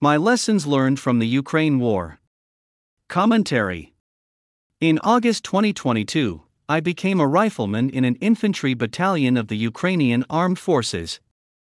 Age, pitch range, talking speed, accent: 50-69, 115-175 Hz, 125 wpm, American